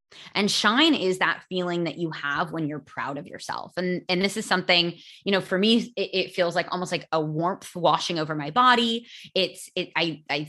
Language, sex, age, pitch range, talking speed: English, female, 20-39, 165-225 Hz, 210 wpm